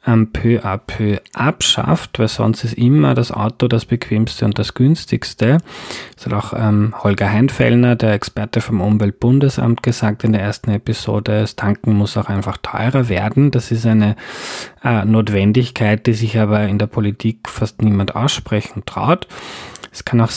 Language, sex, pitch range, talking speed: German, male, 105-125 Hz, 160 wpm